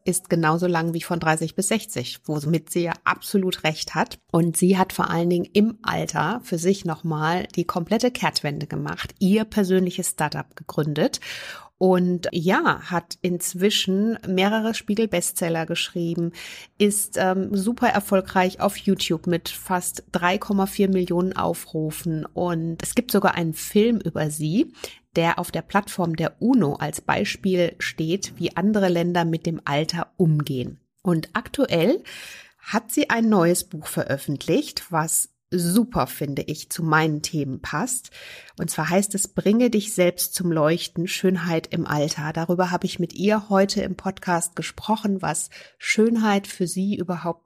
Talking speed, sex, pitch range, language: 150 wpm, female, 165-195 Hz, German